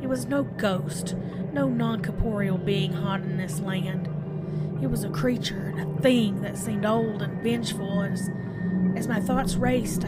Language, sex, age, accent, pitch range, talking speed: English, female, 30-49, American, 170-200 Hz, 165 wpm